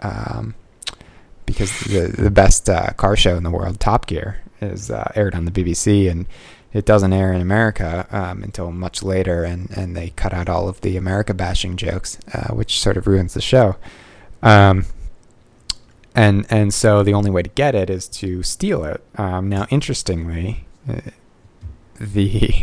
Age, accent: 20-39, American